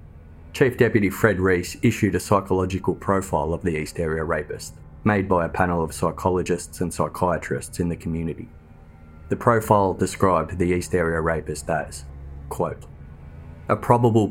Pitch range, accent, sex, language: 80-100 Hz, Australian, male, English